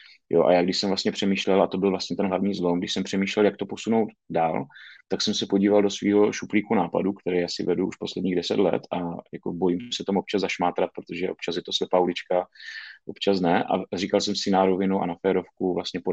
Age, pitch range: 30-49, 90-100 Hz